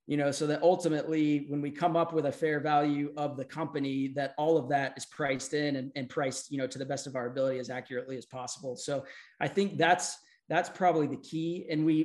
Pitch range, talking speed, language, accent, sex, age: 140-155 Hz, 240 wpm, English, American, male, 20-39